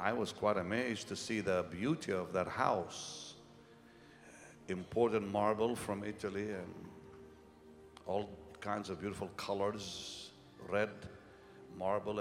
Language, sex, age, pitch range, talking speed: English, male, 60-79, 100-115 Hz, 115 wpm